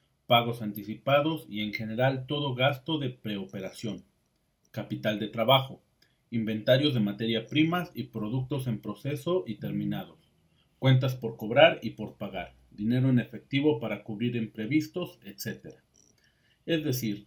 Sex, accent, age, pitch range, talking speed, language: male, Mexican, 40-59, 110-135 Hz, 130 wpm, Spanish